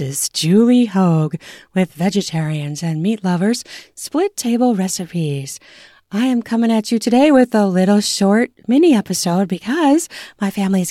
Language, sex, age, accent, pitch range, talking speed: English, female, 30-49, American, 175-220 Hz, 145 wpm